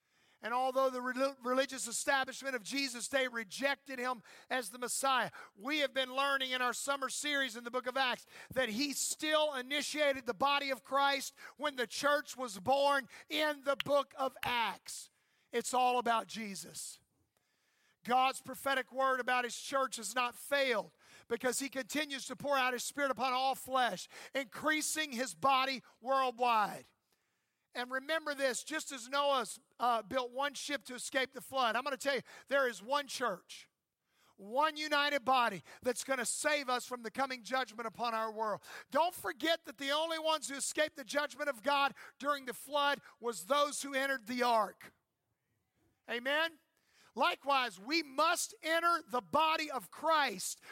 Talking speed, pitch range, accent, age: 165 wpm, 245-285 Hz, American, 50-69